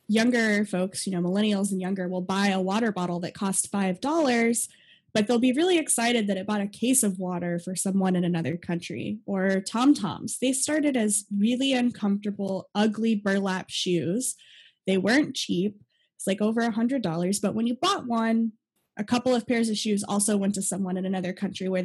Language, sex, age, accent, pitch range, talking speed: English, female, 20-39, American, 190-230 Hz, 185 wpm